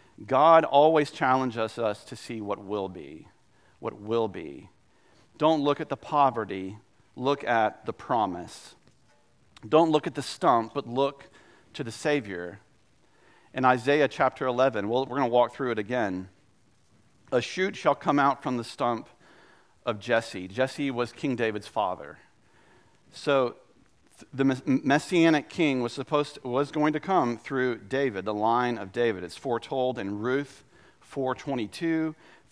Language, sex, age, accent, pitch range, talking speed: English, male, 40-59, American, 115-145 Hz, 145 wpm